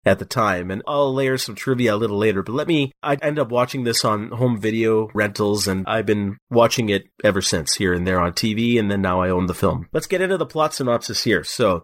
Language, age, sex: English, 30-49, male